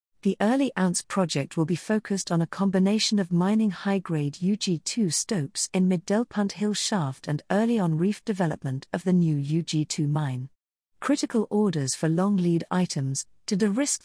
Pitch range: 160-205 Hz